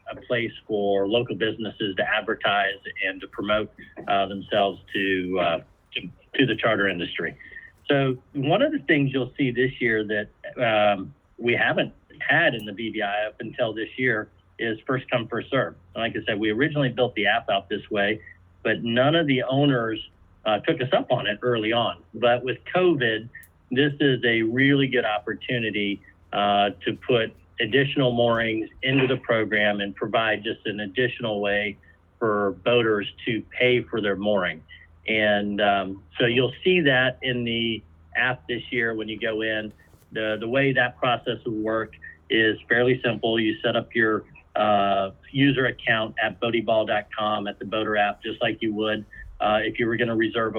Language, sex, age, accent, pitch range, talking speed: English, male, 50-69, American, 105-125 Hz, 175 wpm